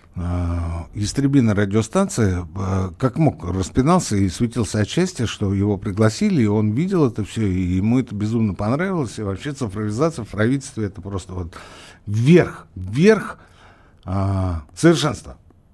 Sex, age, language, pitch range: male, 60-79, Russian, 90-140 Hz